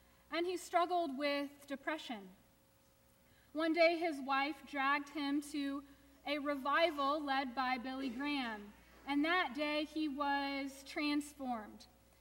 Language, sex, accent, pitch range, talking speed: English, female, American, 260-320 Hz, 120 wpm